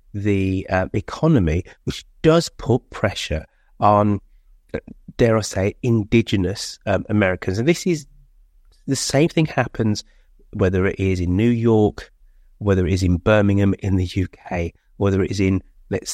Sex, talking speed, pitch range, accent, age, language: male, 150 wpm, 90-115 Hz, British, 30-49, English